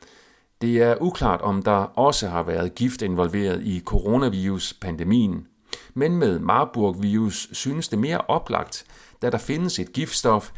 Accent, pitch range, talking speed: native, 90-120 Hz, 135 wpm